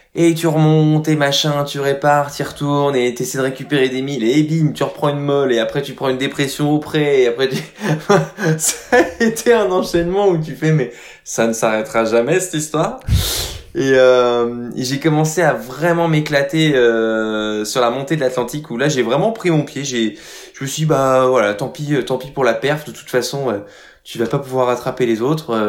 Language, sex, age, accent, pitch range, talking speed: French, male, 20-39, French, 125-160 Hz, 220 wpm